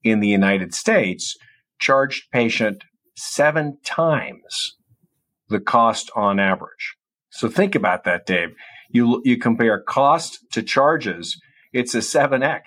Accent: American